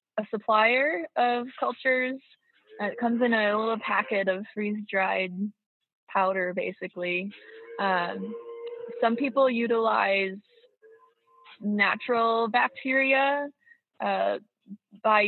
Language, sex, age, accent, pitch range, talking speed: English, female, 20-39, American, 195-235 Hz, 90 wpm